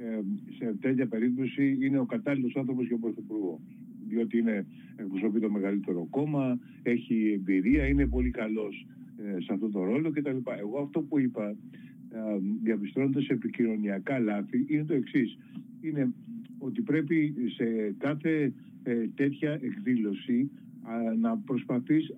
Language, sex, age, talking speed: Greek, male, 50-69, 130 wpm